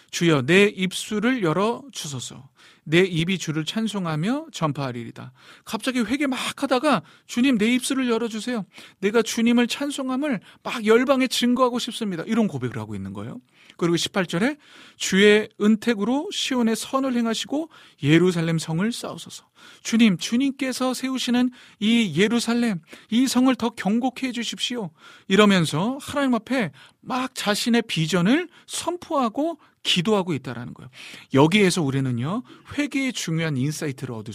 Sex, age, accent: male, 40-59, native